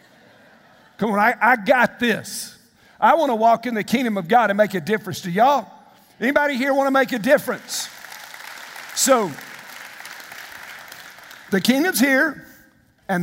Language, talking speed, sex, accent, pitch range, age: English, 150 wpm, male, American, 170-230 Hz, 50-69